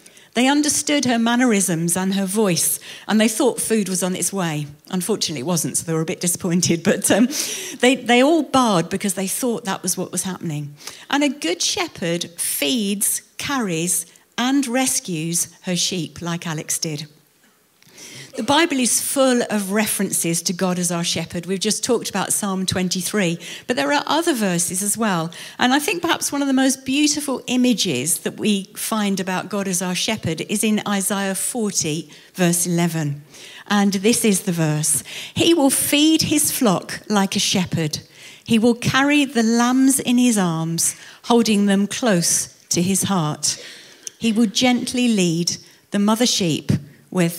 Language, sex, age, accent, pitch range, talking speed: English, female, 50-69, British, 170-235 Hz, 170 wpm